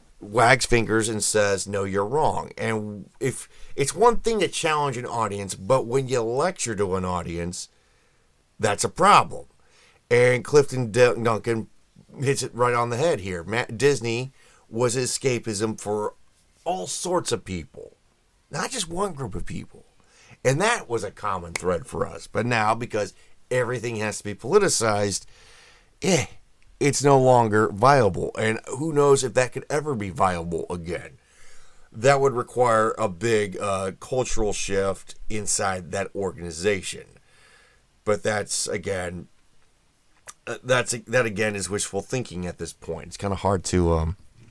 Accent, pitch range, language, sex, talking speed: American, 95-130 Hz, English, male, 150 wpm